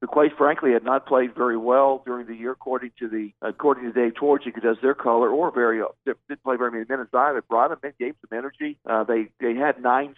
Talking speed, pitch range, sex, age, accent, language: 240 wpm, 115-135 Hz, male, 50-69, American, English